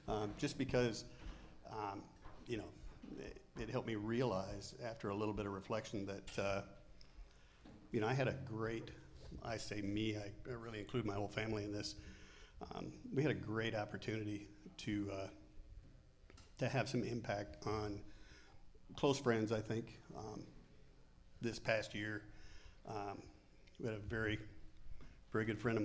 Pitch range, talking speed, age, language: 100-110 Hz, 155 wpm, 50-69, English